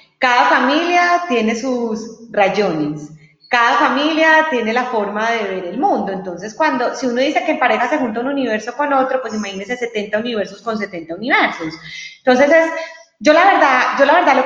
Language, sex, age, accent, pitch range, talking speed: Spanish, female, 30-49, Colombian, 210-290 Hz, 185 wpm